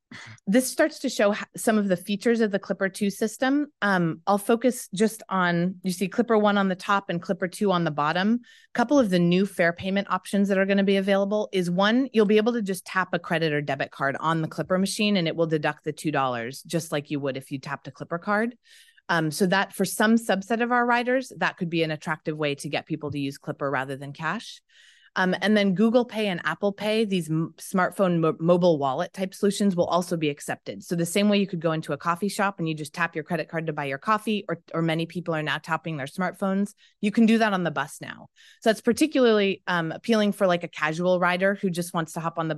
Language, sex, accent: English, female, American